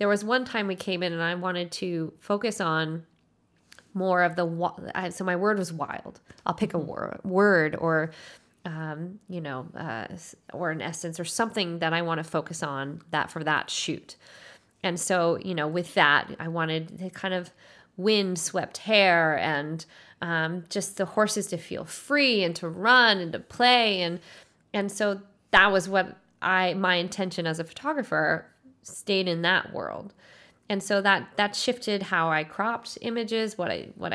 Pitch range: 170-200 Hz